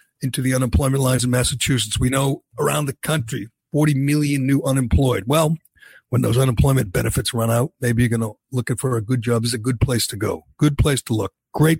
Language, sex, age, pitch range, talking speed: English, male, 60-79, 125-160 Hz, 220 wpm